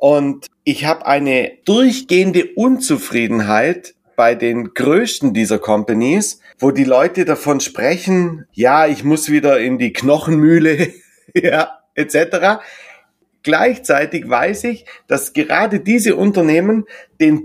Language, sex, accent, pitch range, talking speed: German, male, German, 150-215 Hz, 115 wpm